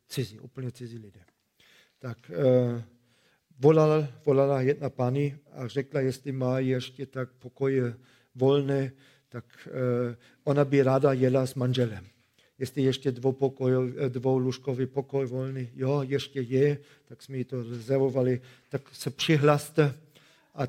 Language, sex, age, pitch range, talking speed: Czech, male, 50-69, 125-145 Hz, 130 wpm